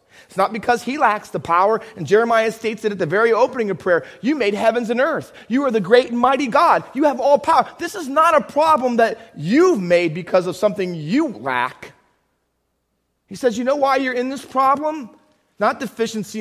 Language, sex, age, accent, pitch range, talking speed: English, male, 30-49, American, 210-270 Hz, 210 wpm